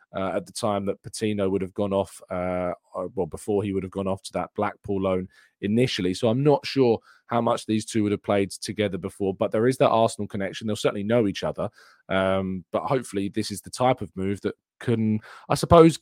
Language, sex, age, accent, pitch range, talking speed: English, male, 20-39, British, 100-120 Hz, 230 wpm